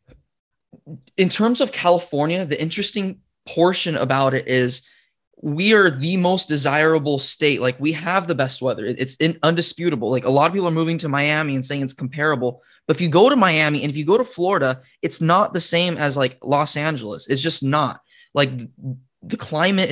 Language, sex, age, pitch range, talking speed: English, male, 20-39, 130-165 Hz, 190 wpm